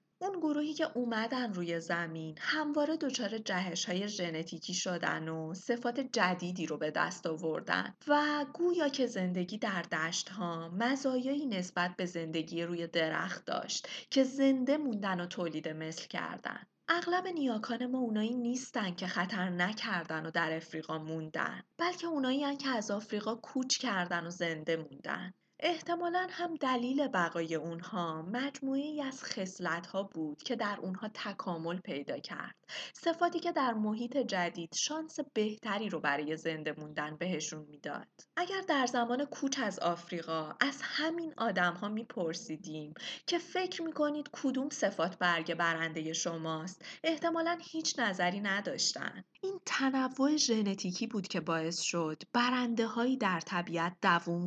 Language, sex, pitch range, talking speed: Persian, female, 170-270 Hz, 140 wpm